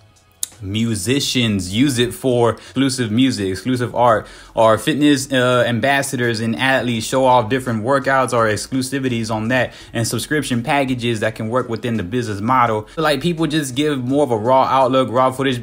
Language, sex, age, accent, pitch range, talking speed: English, male, 20-39, American, 115-140 Hz, 170 wpm